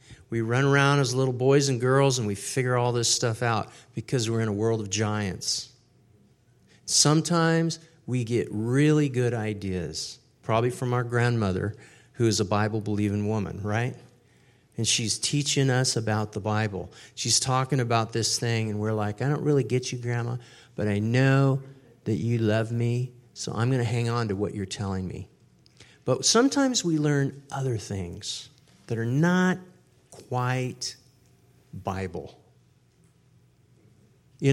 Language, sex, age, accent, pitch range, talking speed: English, male, 40-59, American, 115-145 Hz, 155 wpm